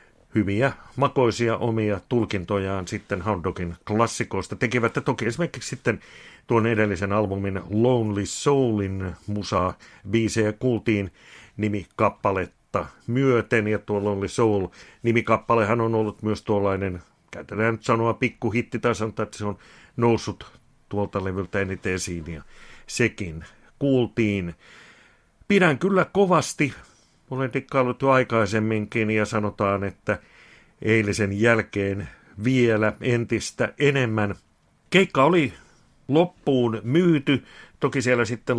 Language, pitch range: Finnish, 100-125 Hz